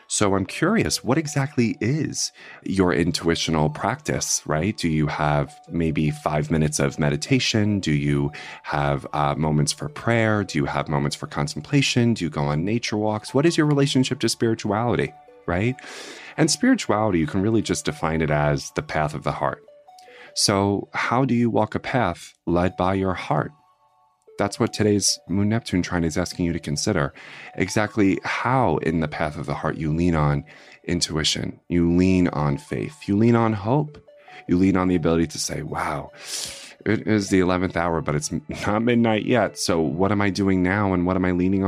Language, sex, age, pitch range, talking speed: English, male, 30-49, 80-110 Hz, 185 wpm